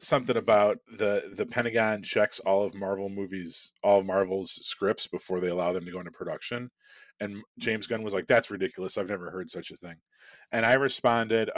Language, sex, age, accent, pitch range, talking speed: English, male, 30-49, American, 95-135 Hz, 190 wpm